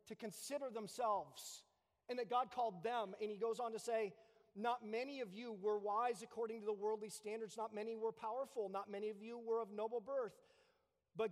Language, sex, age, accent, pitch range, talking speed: English, male, 40-59, American, 160-225 Hz, 200 wpm